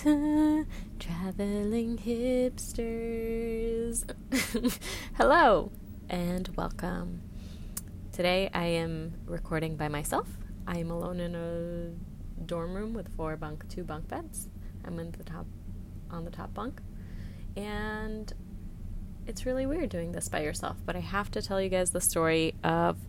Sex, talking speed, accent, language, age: female, 130 wpm, American, English, 20-39